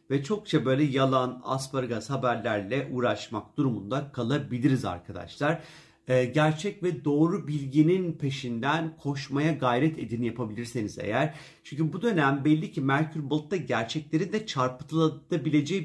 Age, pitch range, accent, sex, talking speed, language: 50-69, 125-155 Hz, native, male, 115 wpm, Turkish